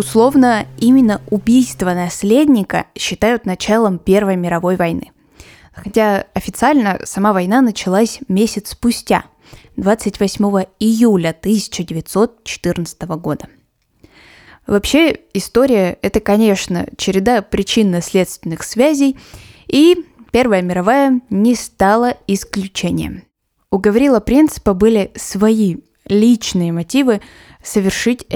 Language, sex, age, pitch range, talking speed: Russian, female, 20-39, 190-240 Hz, 85 wpm